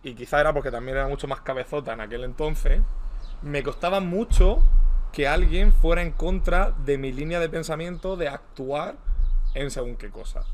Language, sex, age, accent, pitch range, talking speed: Spanish, male, 20-39, Spanish, 130-165 Hz, 175 wpm